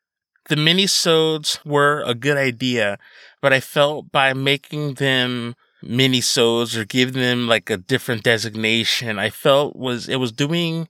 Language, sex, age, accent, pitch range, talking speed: English, male, 20-39, American, 115-140 Hz, 145 wpm